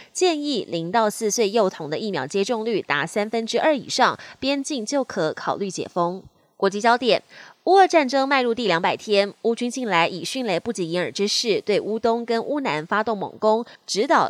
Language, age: Chinese, 20-39